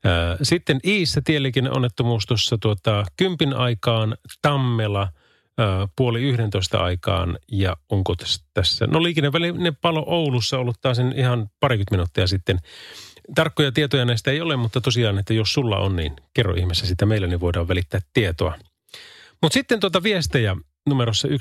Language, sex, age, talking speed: Finnish, male, 30-49, 135 wpm